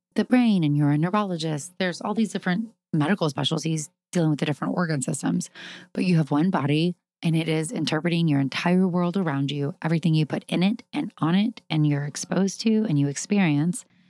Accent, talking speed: American, 200 wpm